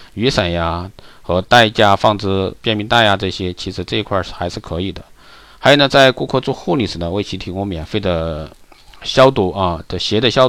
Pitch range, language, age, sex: 90-115 Hz, Chinese, 50-69, male